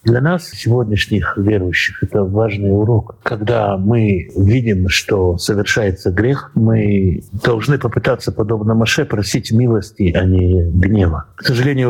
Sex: male